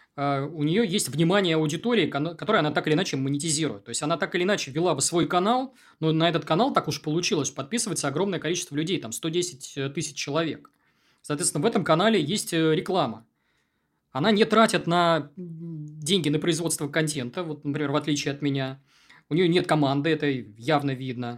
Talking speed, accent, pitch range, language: 185 wpm, native, 145-180 Hz, Russian